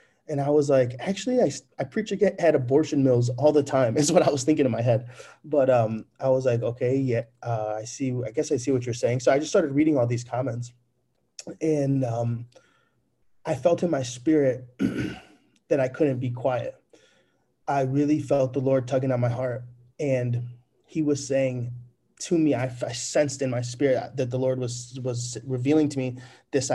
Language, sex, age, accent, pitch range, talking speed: English, male, 20-39, American, 120-150 Hz, 200 wpm